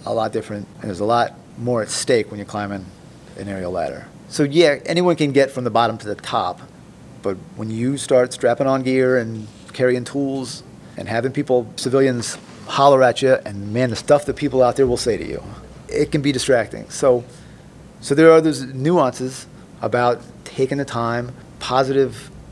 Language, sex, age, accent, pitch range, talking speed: English, male, 40-59, American, 115-140 Hz, 190 wpm